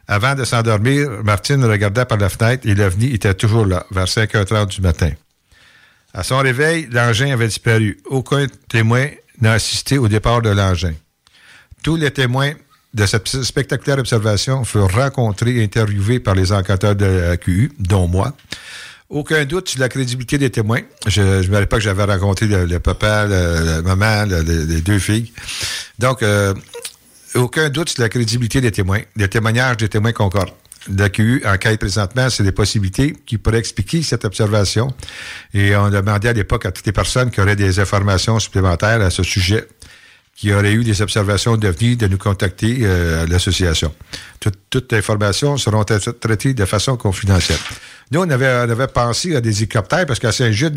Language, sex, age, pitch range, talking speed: French, male, 60-79, 100-125 Hz, 180 wpm